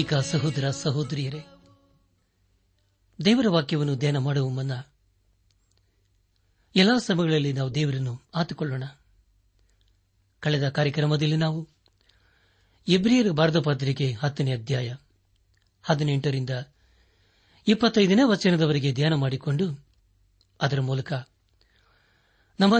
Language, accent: Kannada, native